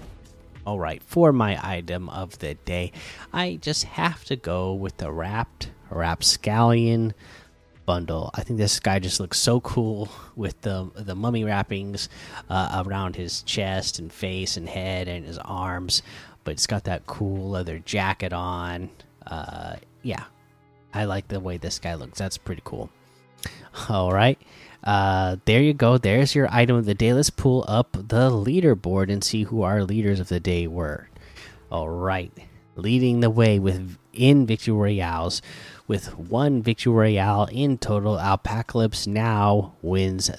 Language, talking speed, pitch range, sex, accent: English, 155 wpm, 90-115 Hz, male, American